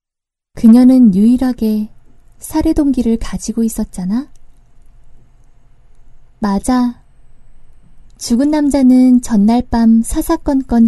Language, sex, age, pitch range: Korean, female, 20-39, 205-270 Hz